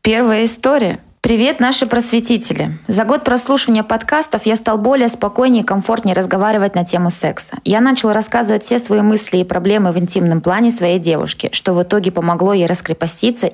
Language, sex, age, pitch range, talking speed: Russian, female, 20-39, 185-220 Hz, 170 wpm